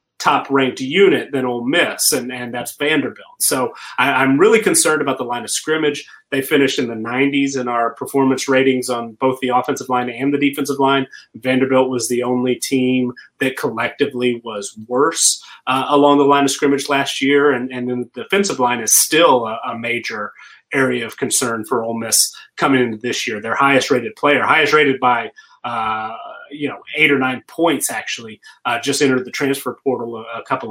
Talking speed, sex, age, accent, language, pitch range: 190 wpm, male, 30-49, American, English, 125-140 Hz